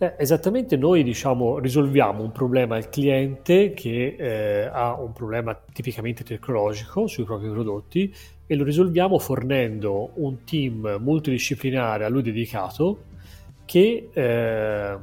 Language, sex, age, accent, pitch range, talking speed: Italian, male, 30-49, native, 110-145 Hz, 125 wpm